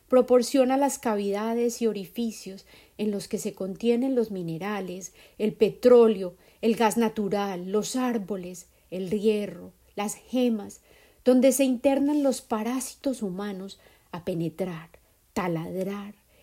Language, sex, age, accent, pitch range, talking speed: Spanish, female, 30-49, Colombian, 190-245 Hz, 115 wpm